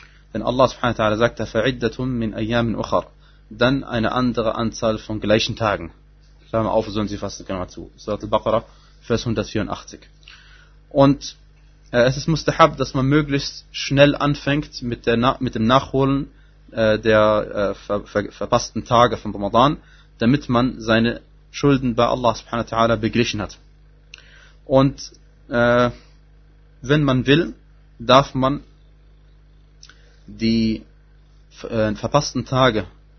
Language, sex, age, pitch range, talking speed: German, male, 20-39, 110-135 Hz, 125 wpm